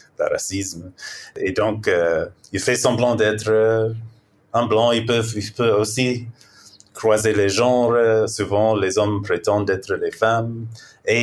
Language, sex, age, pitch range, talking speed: French, male, 30-49, 105-130 Hz, 145 wpm